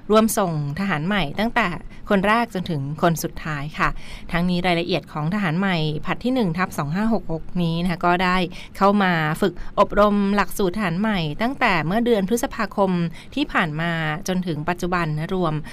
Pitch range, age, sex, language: 170-200 Hz, 20-39, female, Thai